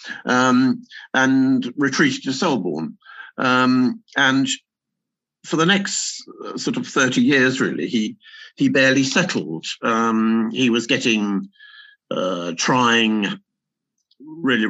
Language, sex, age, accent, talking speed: English, male, 50-69, British, 110 wpm